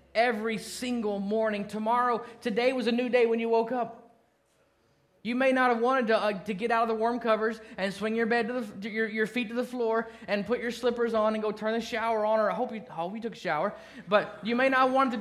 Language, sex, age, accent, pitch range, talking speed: English, male, 30-49, American, 160-230 Hz, 265 wpm